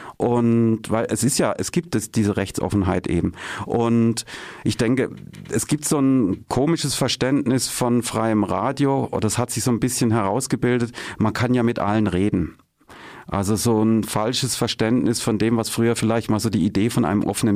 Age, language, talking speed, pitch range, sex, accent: 40-59, German, 185 wpm, 105-125 Hz, male, German